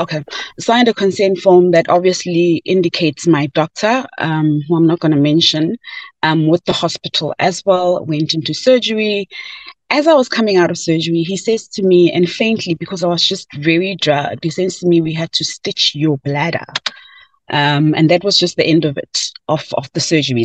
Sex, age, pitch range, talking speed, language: female, 30-49, 150-185 Hz, 195 wpm, English